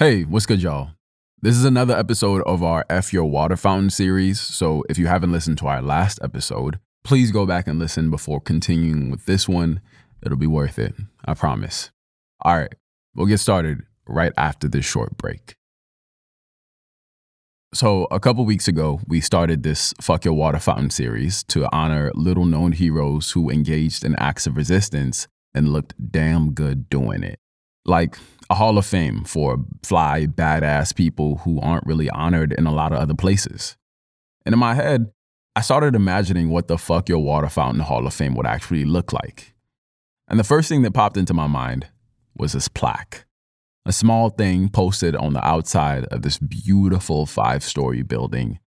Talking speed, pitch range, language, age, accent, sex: 175 wpm, 75-100 Hz, English, 20-39, American, male